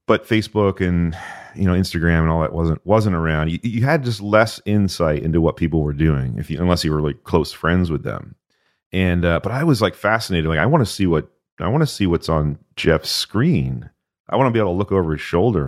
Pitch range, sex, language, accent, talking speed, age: 80-105 Hz, male, English, American, 245 wpm, 40-59